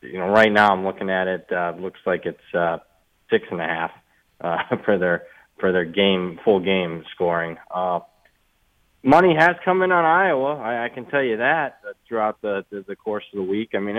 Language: English